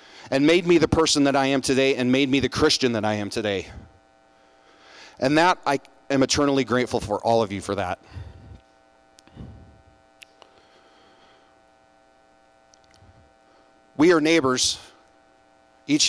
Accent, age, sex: American, 40-59, male